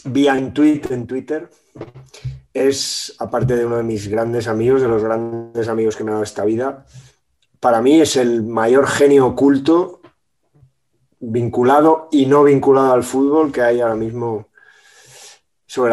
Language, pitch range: Spanish, 115-140 Hz